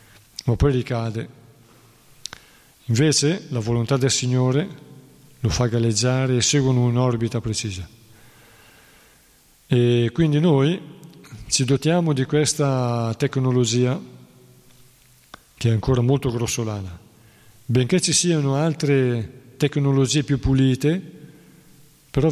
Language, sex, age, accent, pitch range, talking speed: Italian, male, 40-59, native, 115-140 Hz, 95 wpm